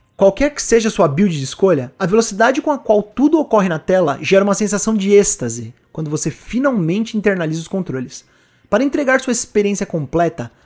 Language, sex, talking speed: Portuguese, male, 185 wpm